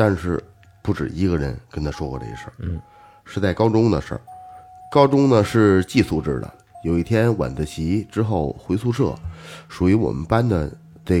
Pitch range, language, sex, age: 85-115 Hz, Chinese, male, 30-49